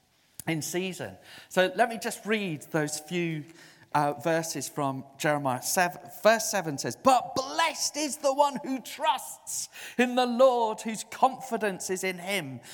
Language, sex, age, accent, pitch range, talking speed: English, male, 40-59, British, 120-185 Hz, 150 wpm